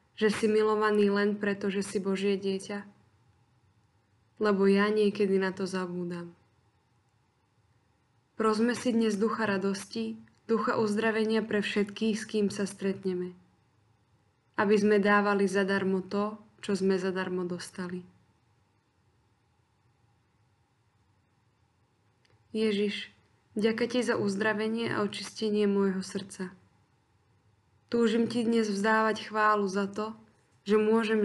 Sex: female